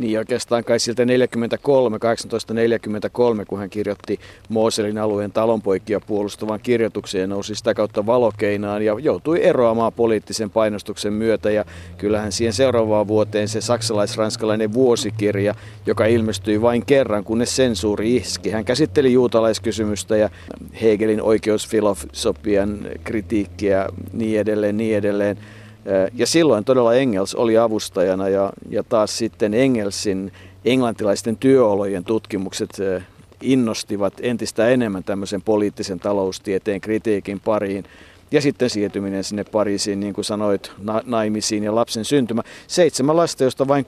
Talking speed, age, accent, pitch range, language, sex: 125 wpm, 50-69, native, 100-115 Hz, Finnish, male